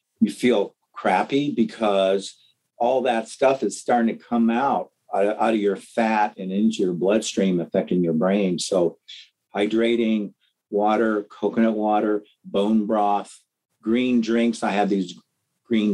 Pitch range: 100-120 Hz